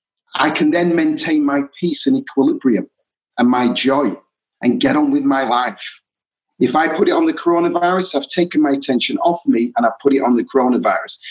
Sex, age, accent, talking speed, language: male, 40-59, British, 195 wpm, English